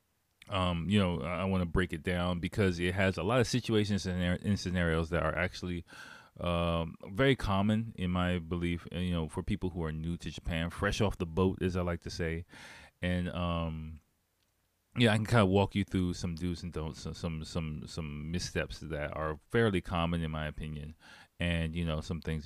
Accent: American